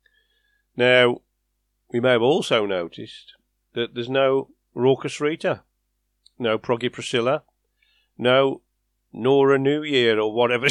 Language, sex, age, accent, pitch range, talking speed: English, male, 50-69, British, 115-145 Hz, 110 wpm